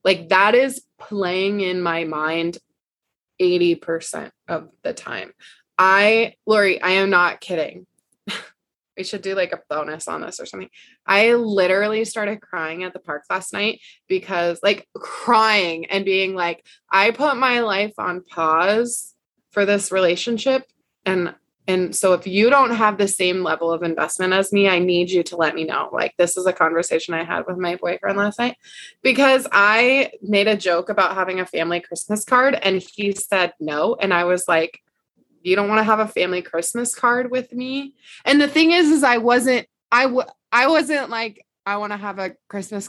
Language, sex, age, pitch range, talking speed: English, female, 20-39, 180-225 Hz, 185 wpm